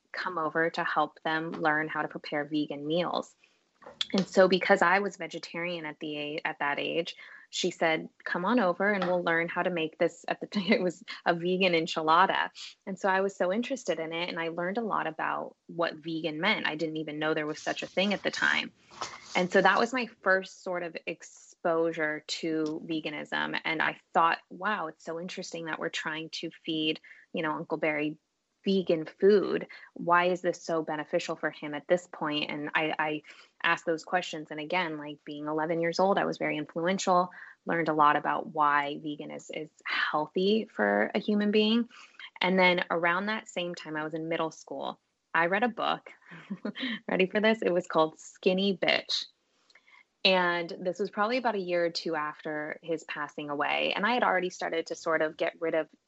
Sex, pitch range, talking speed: female, 155-185 Hz, 200 wpm